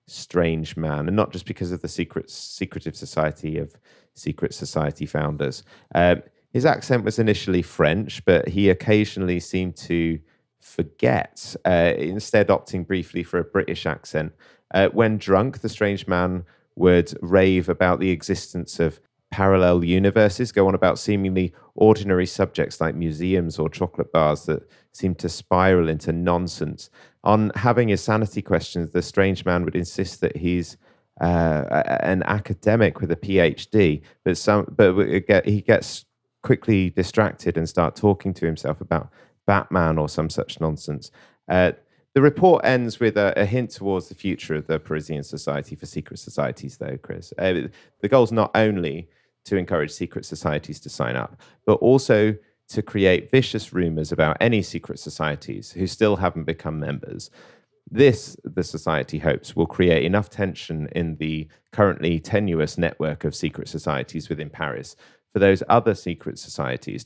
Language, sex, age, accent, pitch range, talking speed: English, male, 30-49, British, 80-105 Hz, 155 wpm